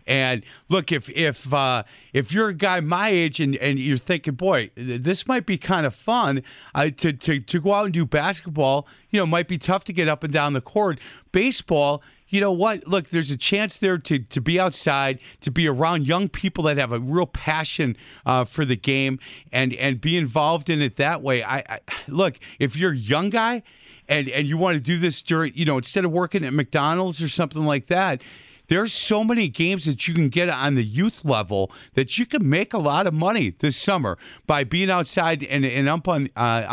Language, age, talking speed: English, 40-59, 215 wpm